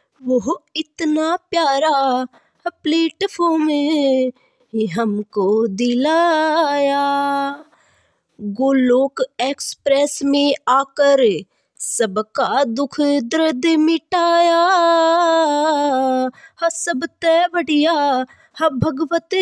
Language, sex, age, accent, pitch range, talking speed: Hindi, female, 20-39, native, 265-325 Hz, 60 wpm